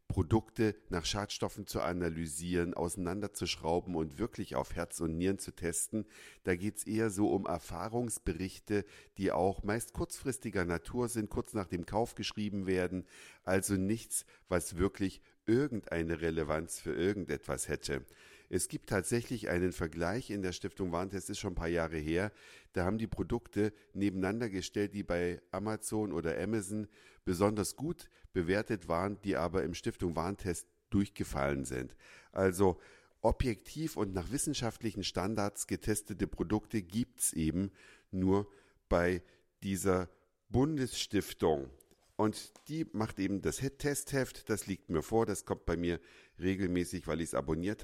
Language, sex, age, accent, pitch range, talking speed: German, male, 50-69, German, 90-110 Hz, 140 wpm